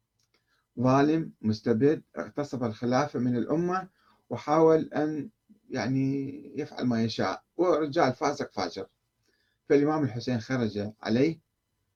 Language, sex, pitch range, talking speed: Arabic, male, 110-155 Hz, 95 wpm